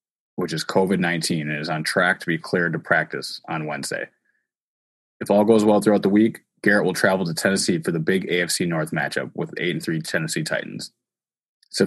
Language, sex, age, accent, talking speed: English, male, 20-39, American, 195 wpm